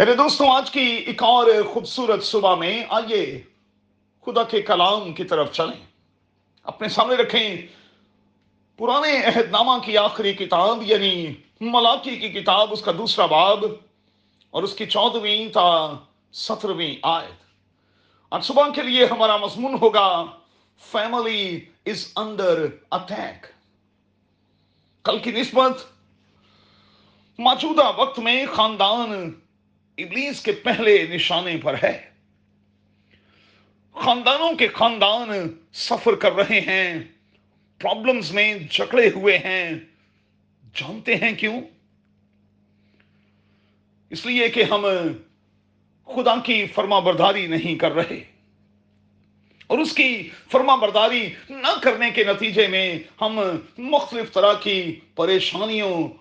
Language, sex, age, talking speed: Urdu, male, 40-59, 105 wpm